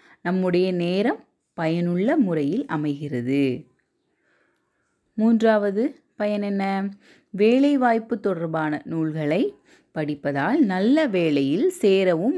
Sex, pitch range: female, 155-235 Hz